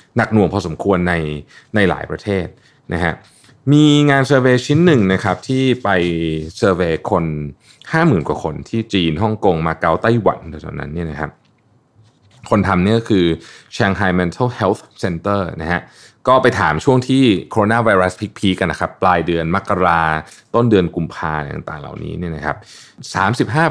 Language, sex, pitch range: Thai, male, 90-120 Hz